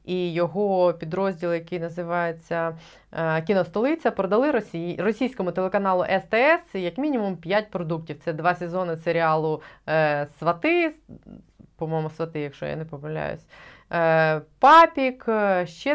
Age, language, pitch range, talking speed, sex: 20-39, Ukrainian, 170-220 Hz, 100 wpm, female